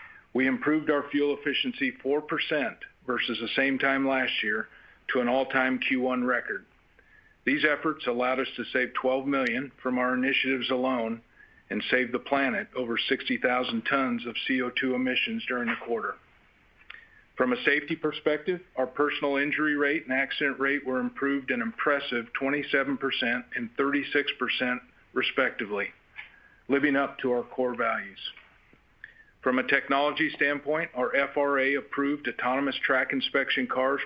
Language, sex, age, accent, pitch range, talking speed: English, male, 50-69, American, 125-145 Hz, 135 wpm